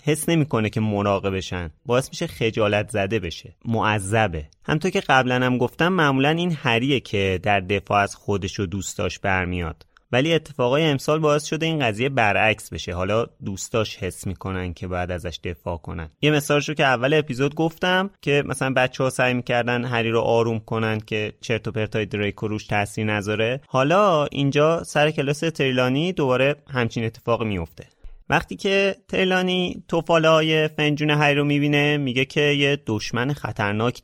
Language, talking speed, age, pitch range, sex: Persian, 160 wpm, 30-49, 105-145 Hz, male